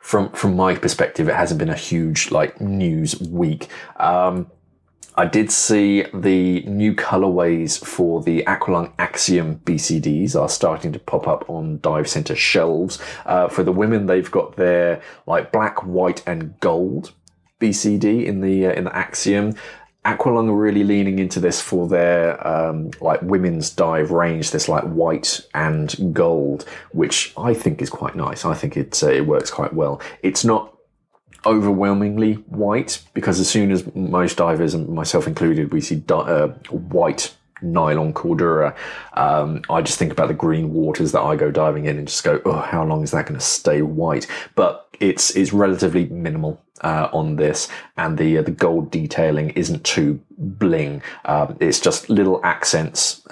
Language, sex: English, male